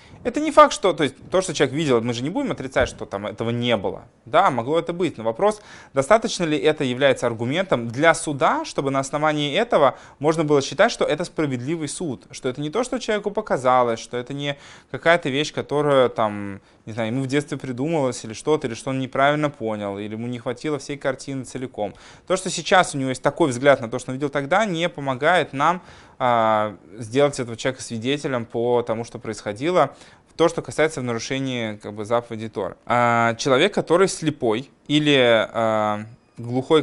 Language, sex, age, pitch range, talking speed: Russian, male, 20-39, 115-155 Hz, 185 wpm